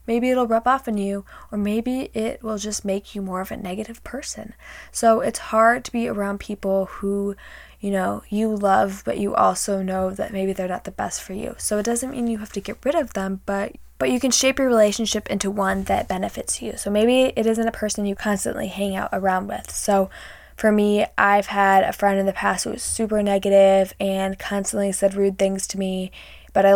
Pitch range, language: 195-225 Hz, English